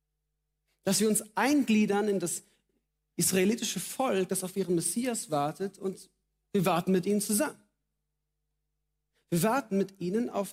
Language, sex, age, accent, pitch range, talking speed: German, male, 40-59, German, 150-195 Hz, 135 wpm